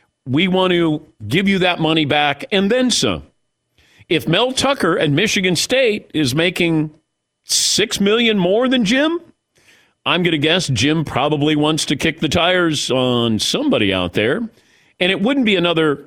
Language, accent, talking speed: English, American, 165 wpm